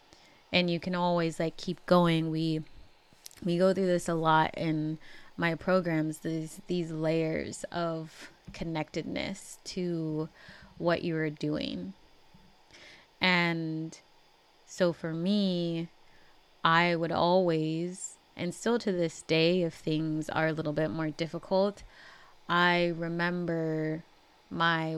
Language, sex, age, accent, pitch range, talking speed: English, female, 20-39, American, 160-175 Hz, 120 wpm